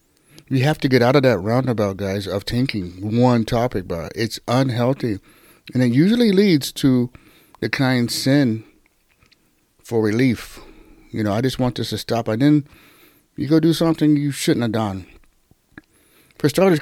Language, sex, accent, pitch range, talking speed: English, male, American, 120-190 Hz, 170 wpm